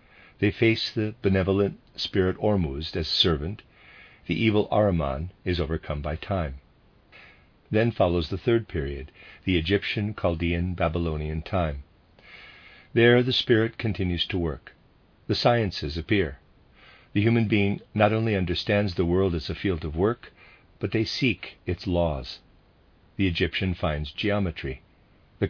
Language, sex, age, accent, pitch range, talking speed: English, male, 50-69, American, 80-105 Hz, 130 wpm